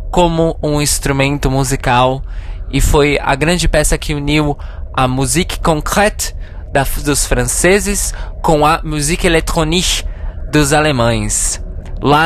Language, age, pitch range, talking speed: Portuguese, 20-39, 90-145 Hz, 115 wpm